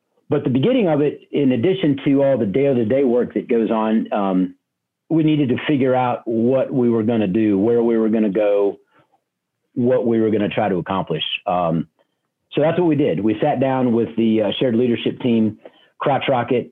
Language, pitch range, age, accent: English, 110-135 Hz, 40-59, American